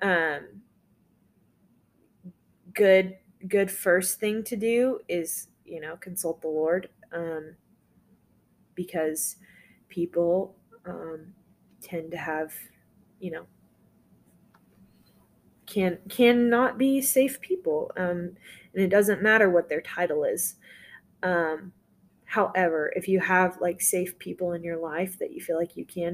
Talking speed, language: 125 wpm, English